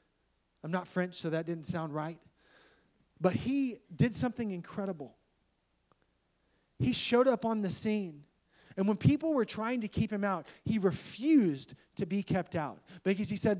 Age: 30-49